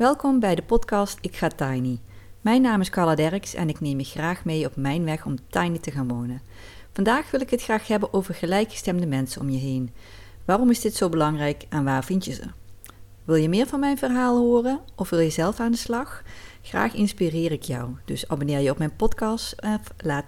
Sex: female